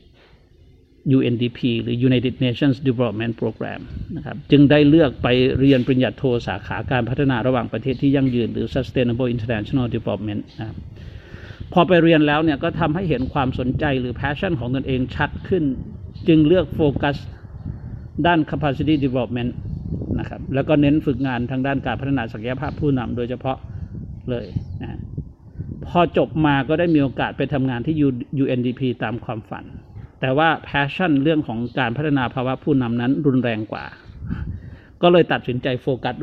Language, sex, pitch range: Thai, male, 120-145 Hz